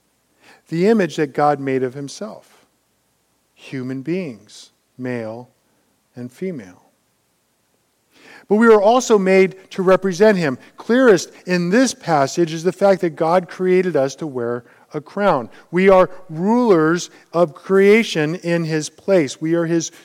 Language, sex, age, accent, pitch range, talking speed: English, male, 50-69, American, 140-190 Hz, 140 wpm